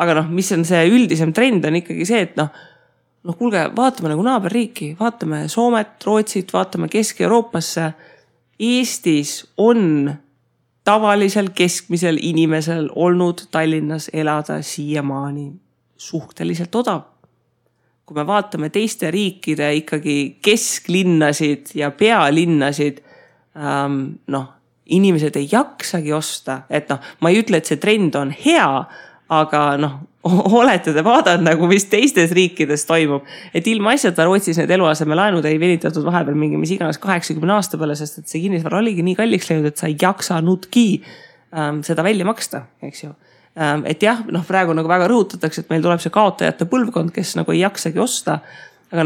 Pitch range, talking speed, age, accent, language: 150-195 Hz, 145 wpm, 30-49, Finnish, English